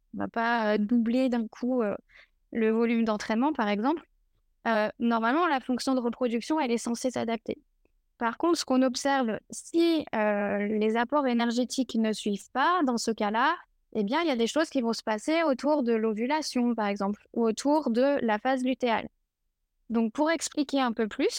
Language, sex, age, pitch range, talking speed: French, female, 10-29, 225-280 Hz, 185 wpm